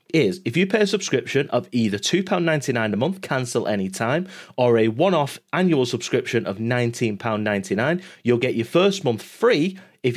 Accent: British